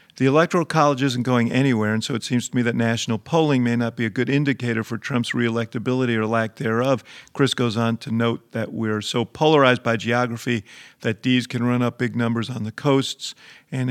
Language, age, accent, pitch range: English, 50-69, American, 115-130 Hz